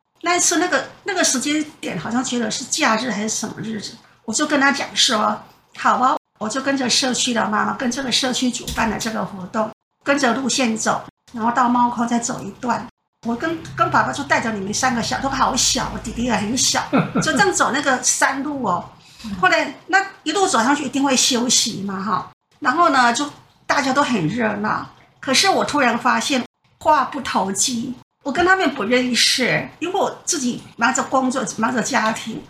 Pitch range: 230-285 Hz